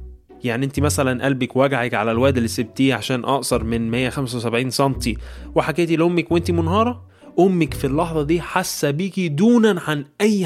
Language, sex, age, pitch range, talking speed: Arabic, male, 20-39, 115-175 Hz, 155 wpm